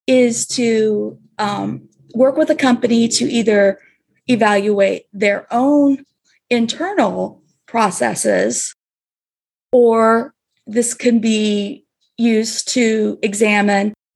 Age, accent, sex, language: 30-49, American, female, English